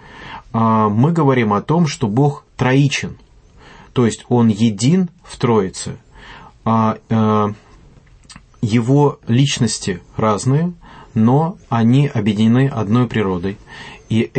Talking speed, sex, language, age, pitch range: 95 wpm, male, English, 30-49, 110-140 Hz